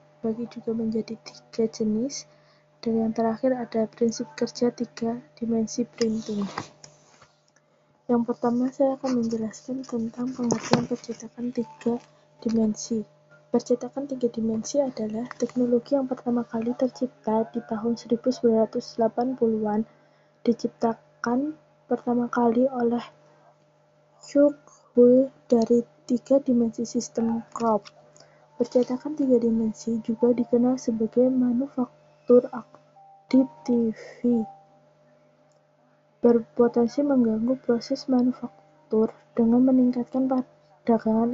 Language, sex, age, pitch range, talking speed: Indonesian, female, 20-39, 225-250 Hz, 90 wpm